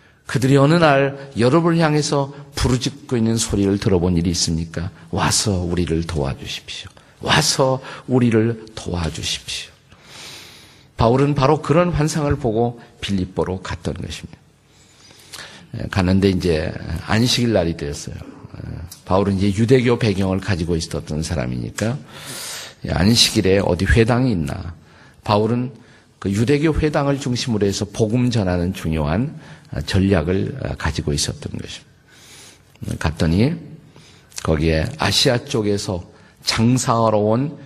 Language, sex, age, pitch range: Korean, male, 50-69, 90-135 Hz